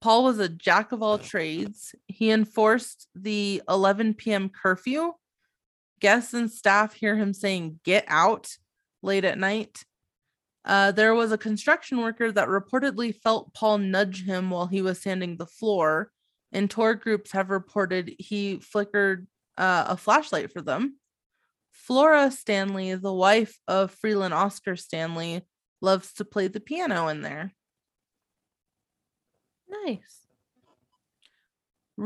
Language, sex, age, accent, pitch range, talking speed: English, female, 20-39, American, 190-225 Hz, 130 wpm